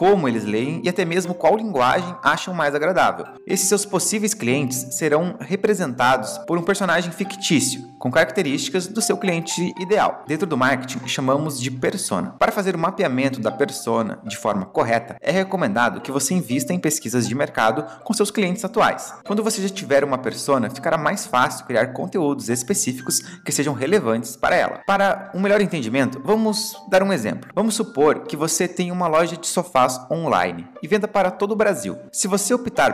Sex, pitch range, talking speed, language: male, 130-195 Hz, 180 wpm, Portuguese